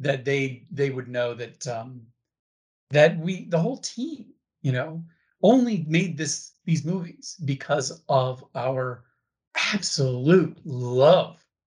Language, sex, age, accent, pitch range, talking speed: English, male, 30-49, American, 130-170 Hz, 125 wpm